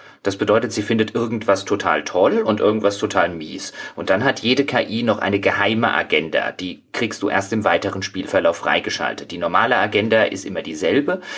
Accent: German